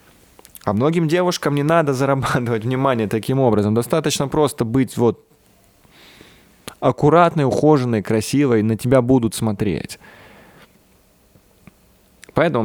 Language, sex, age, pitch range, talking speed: Russian, male, 20-39, 105-130 Hz, 105 wpm